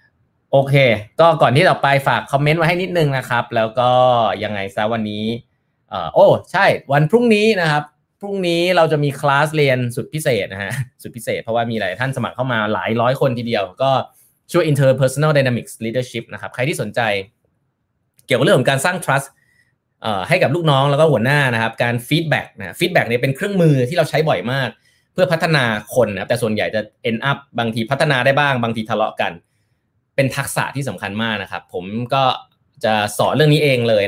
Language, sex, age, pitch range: Thai, male, 20-39, 115-145 Hz